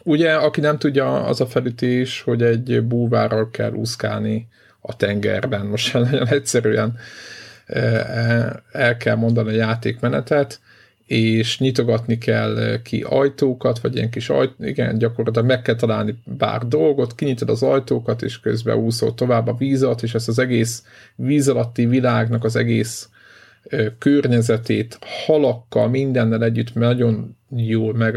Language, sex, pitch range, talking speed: Hungarian, male, 110-130 Hz, 135 wpm